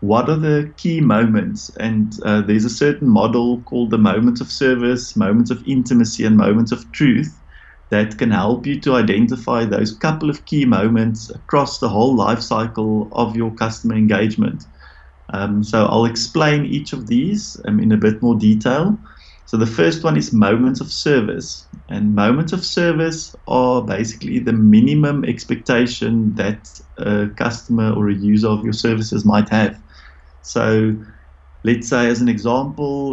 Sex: male